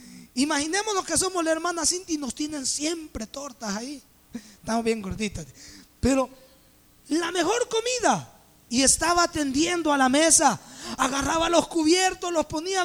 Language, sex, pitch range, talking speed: English, male, 260-345 Hz, 140 wpm